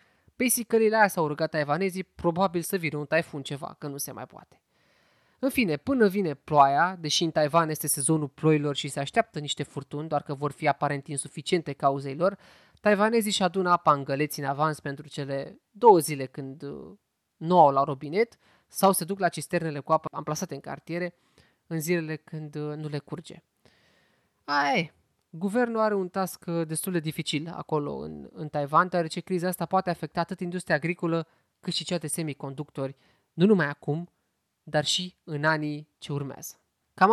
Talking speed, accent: 175 wpm, native